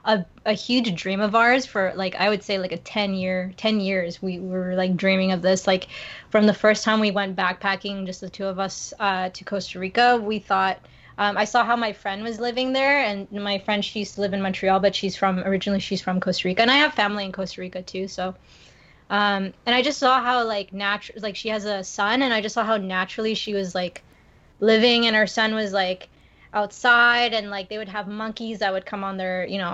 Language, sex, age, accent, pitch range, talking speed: English, female, 20-39, American, 190-220 Hz, 240 wpm